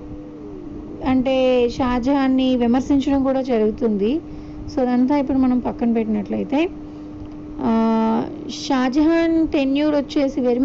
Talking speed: 85 wpm